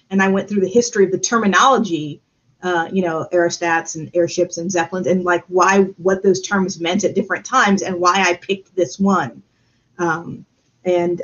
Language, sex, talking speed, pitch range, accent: English, female, 185 wpm, 175-205 Hz, American